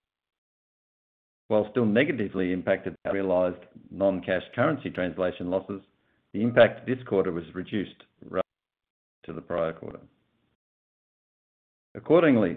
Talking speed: 105 wpm